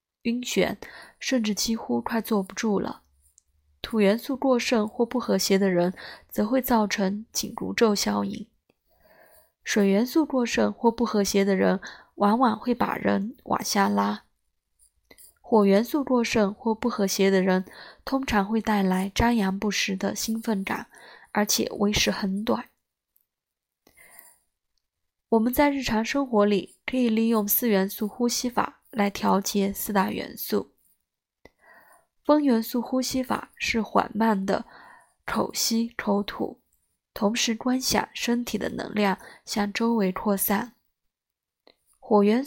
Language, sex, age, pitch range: Chinese, female, 20-39, 195-240 Hz